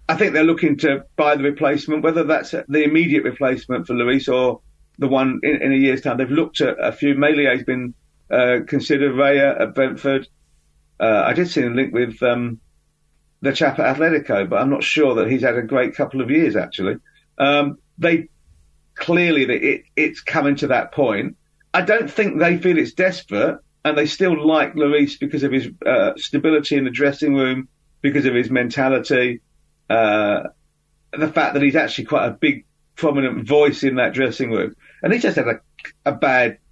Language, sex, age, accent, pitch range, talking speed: English, male, 50-69, British, 130-155 Hz, 195 wpm